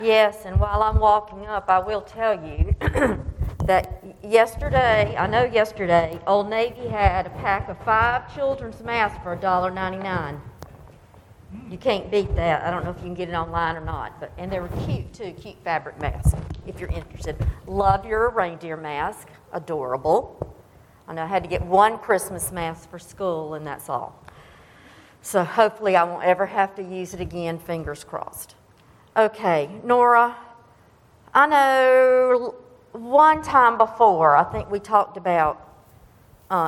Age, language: 50-69, English